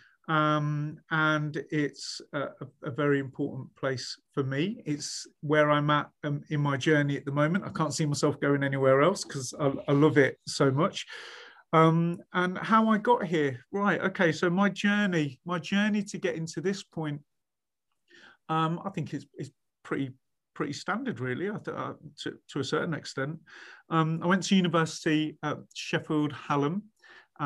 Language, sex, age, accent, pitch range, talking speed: English, male, 40-59, British, 140-165 Hz, 170 wpm